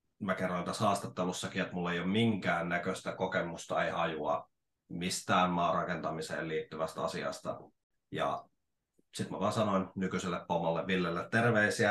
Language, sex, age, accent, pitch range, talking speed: Finnish, male, 30-49, native, 85-100 Hz, 125 wpm